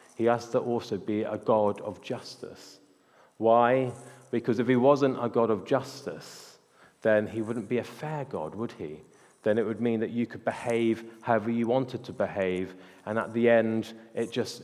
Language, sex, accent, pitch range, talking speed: English, male, British, 100-125 Hz, 190 wpm